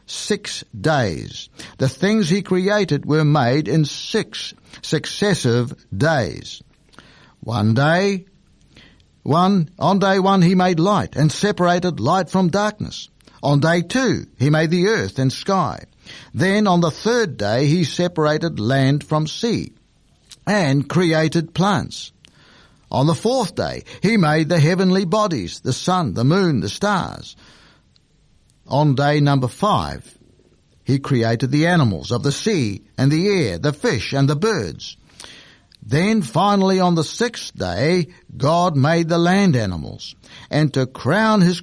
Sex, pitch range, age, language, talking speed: male, 135-190 Hz, 60-79, English, 140 wpm